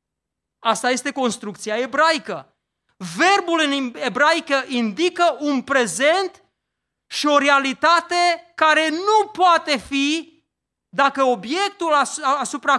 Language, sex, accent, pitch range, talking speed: Romanian, male, native, 205-310 Hz, 95 wpm